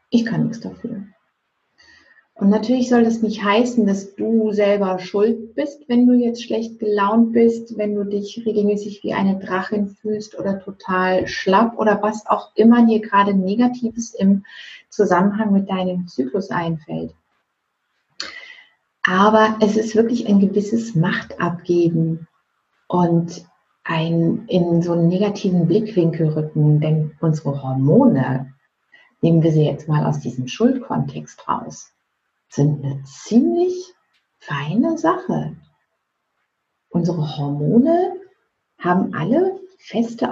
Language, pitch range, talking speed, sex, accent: German, 175-230 Hz, 125 wpm, female, German